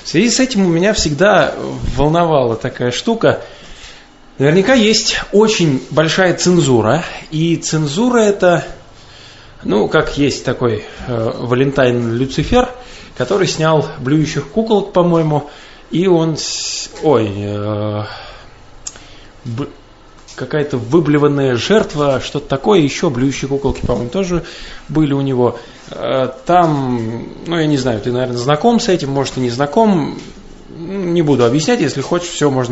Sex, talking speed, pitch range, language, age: male, 130 wpm, 130-175 Hz, Russian, 20-39